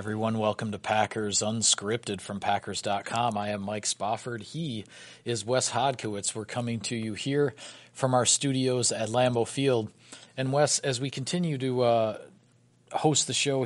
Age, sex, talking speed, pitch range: 40-59, male, 160 wpm, 105-120 Hz